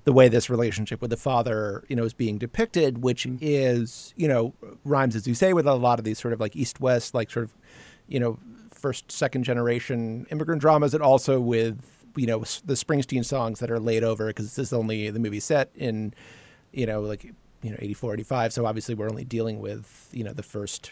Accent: American